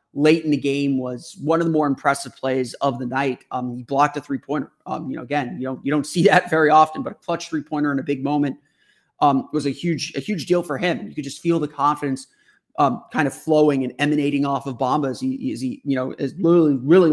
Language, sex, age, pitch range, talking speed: English, male, 30-49, 140-165 Hz, 260 wpm